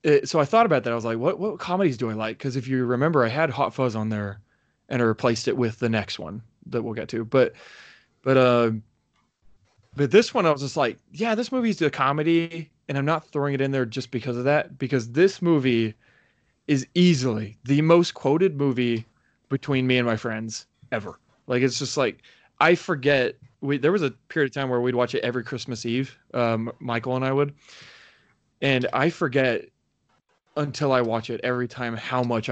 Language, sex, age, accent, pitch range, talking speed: English, male, 20-39, American, 115-145 Hz, 210 wpm